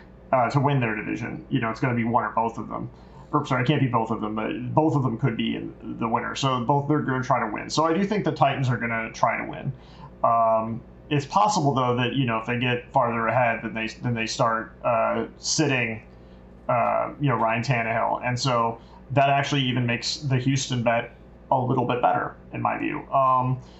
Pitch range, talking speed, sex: 115-140 Hz, 235 wpm, male